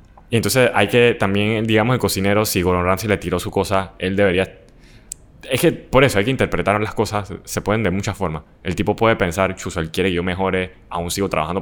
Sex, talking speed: male, 215 wpm